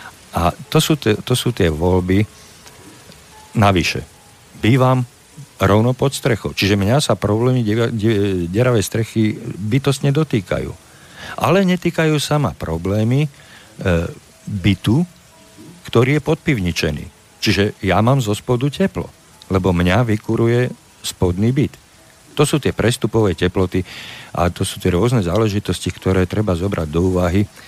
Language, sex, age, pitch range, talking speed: Slovak, male, 50-69, 90-115 Hz, 125 wpm